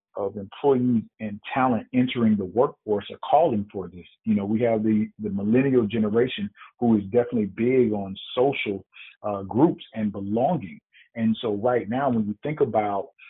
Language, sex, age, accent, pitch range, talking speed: English, male, 40-59, American, 105-125 Hz, 165 wpm